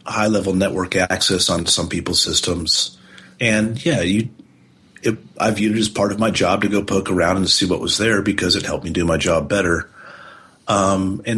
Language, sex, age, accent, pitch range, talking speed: English, male, 40-59, American, 90-110 Hz, 200 wpm